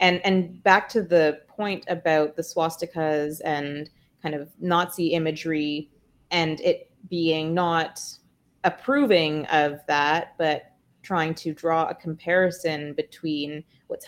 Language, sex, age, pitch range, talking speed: English, female, 30-49, 150-180 Hz, 125 wpm